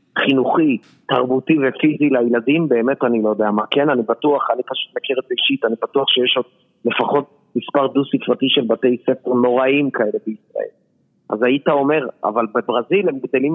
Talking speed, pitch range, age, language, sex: 160 wpm, 120-155 Hz, 40-59, Hebrew, male